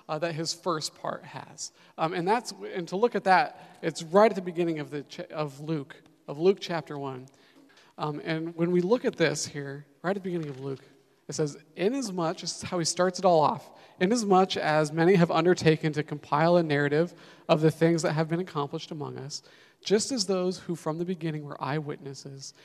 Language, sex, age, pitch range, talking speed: English, male, 40-59, 150-180 Hz, 210 wpm